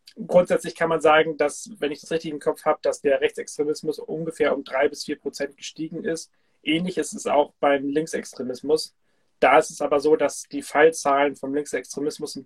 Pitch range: 140-165 Hz